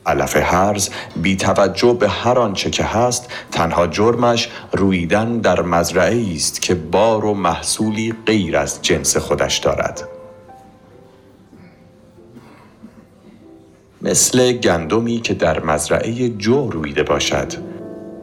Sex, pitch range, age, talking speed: male, 85-110 Hz, 50-69, 105 wpm